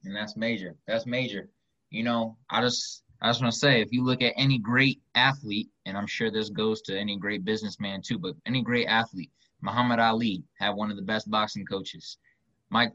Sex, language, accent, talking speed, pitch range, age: male, English, American, 210 wpm, 105-135 Hz, 20-39